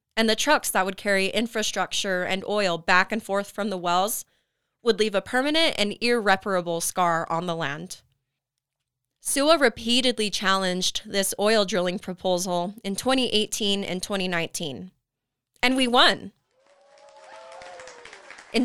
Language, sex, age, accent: English, female, 20-39, American